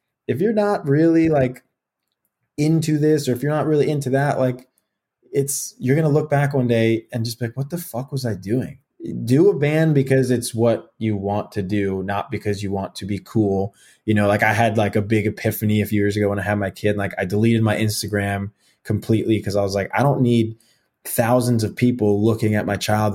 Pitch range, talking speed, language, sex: 100-120 Hz, 230 wpm, English, male